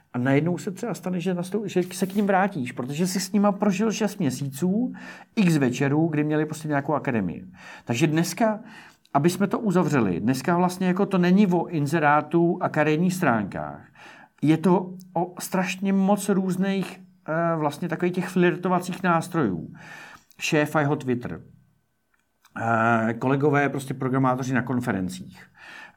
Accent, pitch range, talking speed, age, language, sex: native, 135-175 Hz, 135 wpm, 50-69, Czech, male